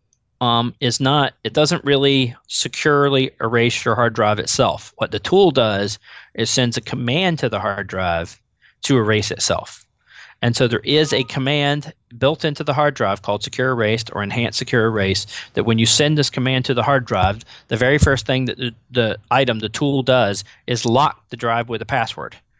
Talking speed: 195 wpm